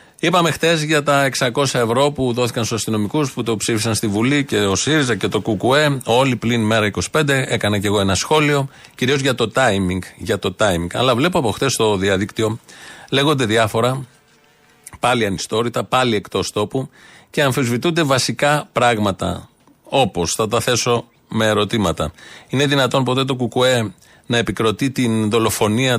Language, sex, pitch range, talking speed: Greek, male, 110-140 Hz, 160 wpm